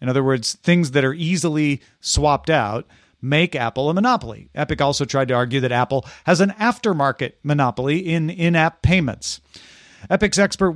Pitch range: 130-175 Hz